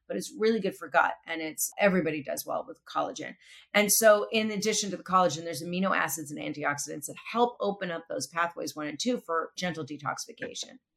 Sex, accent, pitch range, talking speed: female, American, 155-210 Hz, 205 wpm